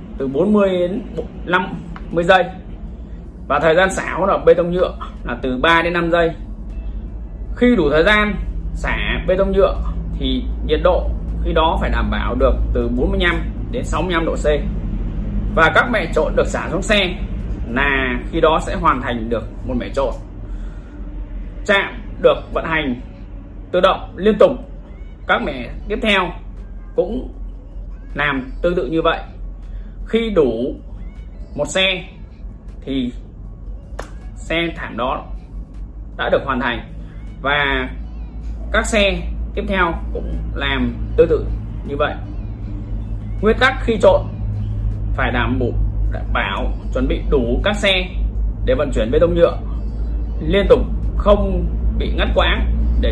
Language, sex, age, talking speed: Vietnamese, male, 20-39, 140 wpm